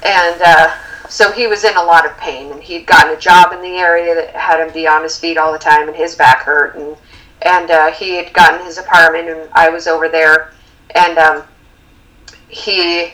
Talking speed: 210 wpm